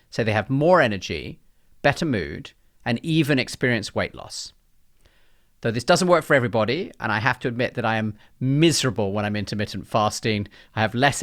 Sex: male